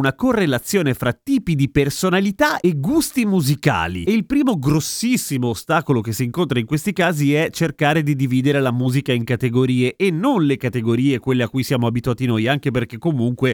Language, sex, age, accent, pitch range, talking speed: Italian, male, 30-49, native, 130-195 Hz, 180 wpm